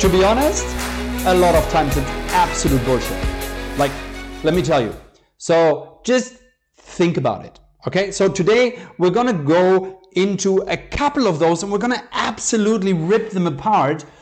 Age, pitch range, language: 50-69, 145-200 Hz, English